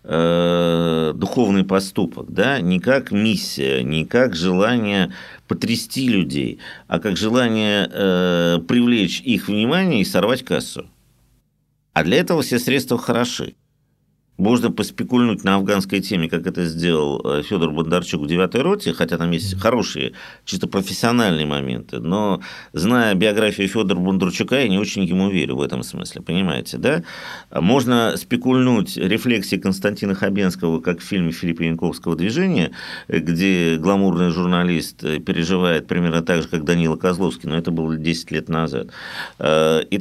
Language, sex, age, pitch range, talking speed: Russian, male, 50-69, 85-100 Hz, 130 wpm